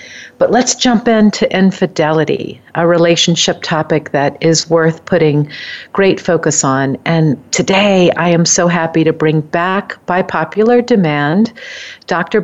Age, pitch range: 50-69, 155-190 Hz